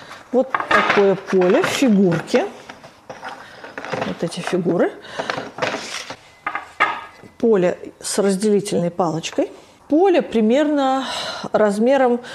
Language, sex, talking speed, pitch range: Russian, female, 70 wpm, 180-240 Hz